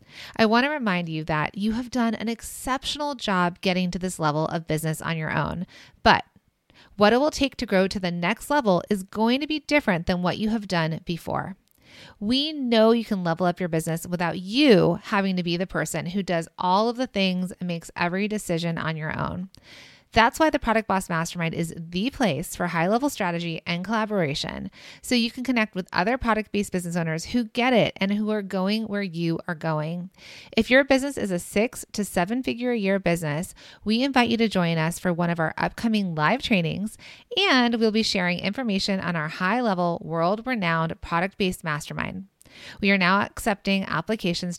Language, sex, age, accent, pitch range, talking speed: English, female, 30-49, American, 170-225 Hz, 190 wpm